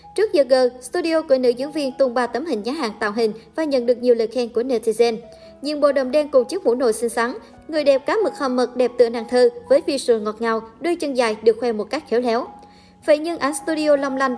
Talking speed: 265 wpm